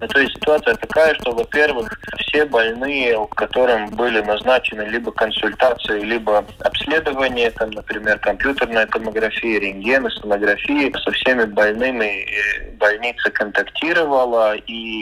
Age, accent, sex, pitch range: 20-39, native, male, 105-125 Hz